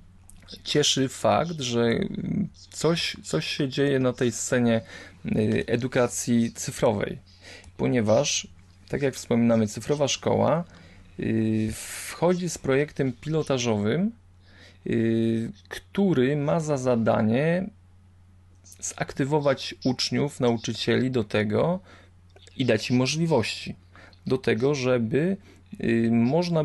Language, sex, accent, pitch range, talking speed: Polish, male, native, 95-130 Hz, 90 wpm